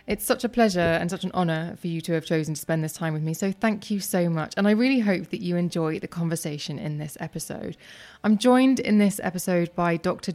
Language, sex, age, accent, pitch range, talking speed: English, female, 20-39, British, 165-200 Hz, 250 wpm